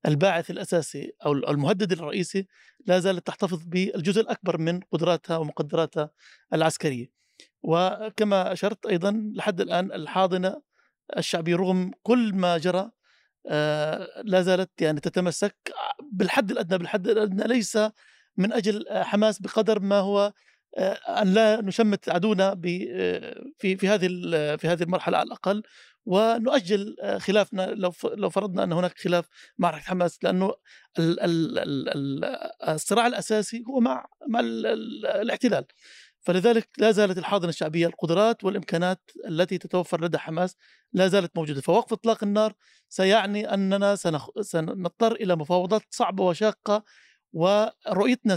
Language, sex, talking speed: Arabic, male, 110 wpm